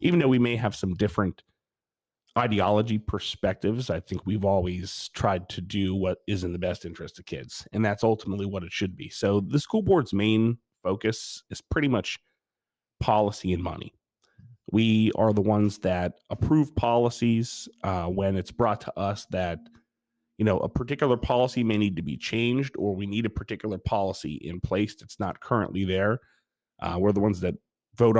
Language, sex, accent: English, male, American